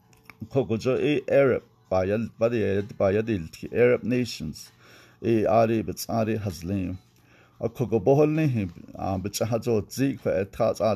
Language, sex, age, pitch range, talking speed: English, male, 60-79, 95-125 Hz, 65 wpm